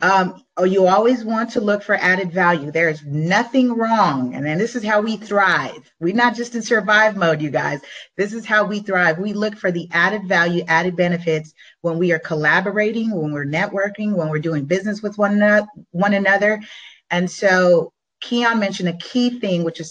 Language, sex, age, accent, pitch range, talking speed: English, female, 30-49, American, 170-215 Hz, 195 wpm